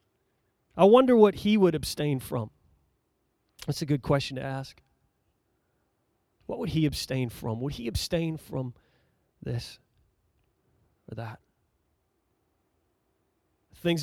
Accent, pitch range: American, 125-170 Hz